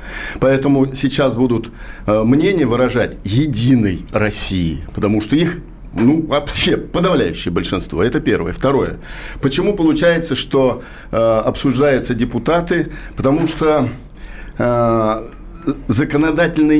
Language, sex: Russian, male